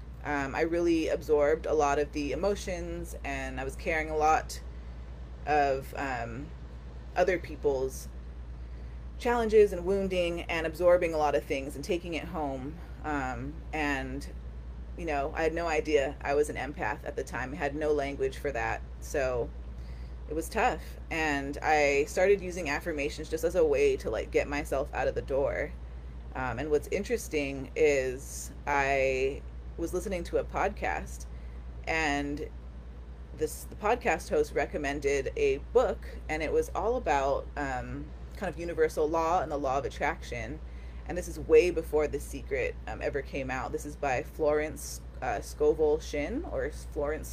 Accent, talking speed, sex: American, 160 wpm, female